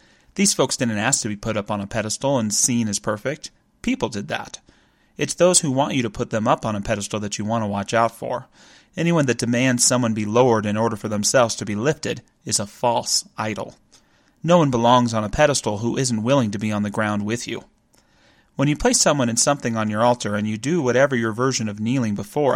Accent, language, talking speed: American, English, 235 wpm